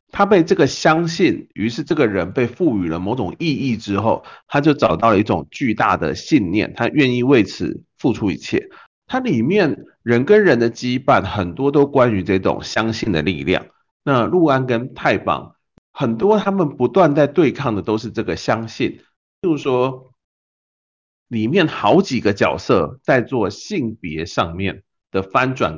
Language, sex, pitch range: Chinese, male, 100-150 Hz